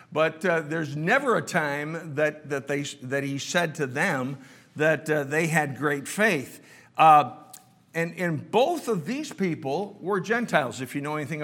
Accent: American